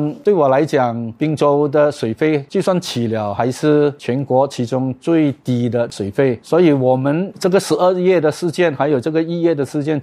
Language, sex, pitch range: Chinese, male, 125-155 Hz